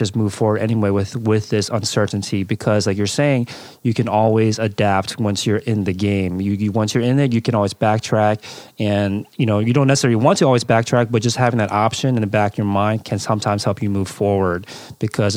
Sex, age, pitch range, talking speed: male, 30-49, 105-125 Hz, 230 wpm